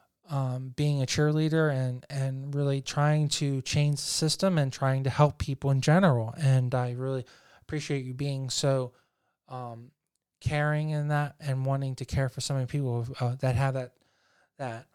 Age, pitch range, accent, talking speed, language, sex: 20-39, 130-150 Hz, American, 175 wpm, English, male